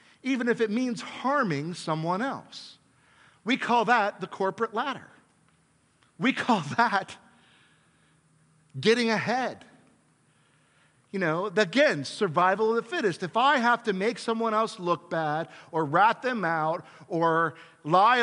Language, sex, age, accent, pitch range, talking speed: English, male, 50-69, American, 160-210 Hz, 130 wpm